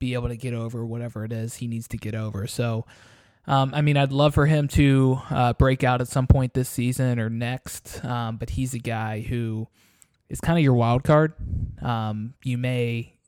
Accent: American